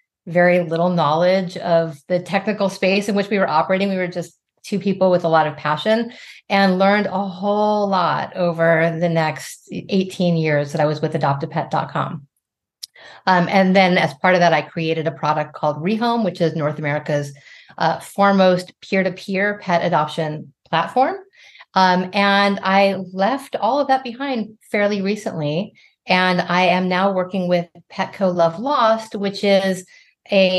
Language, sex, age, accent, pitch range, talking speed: English, female, 40-59, American, 165-200 Hz, 160 wpm